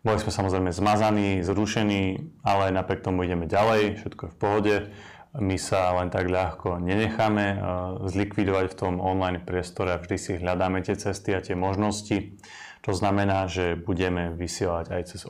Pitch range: 95-105 Hz